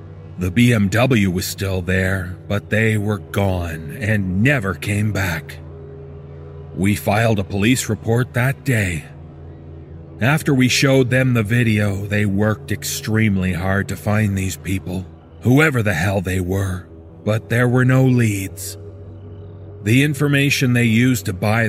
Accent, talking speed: American, 140 wpm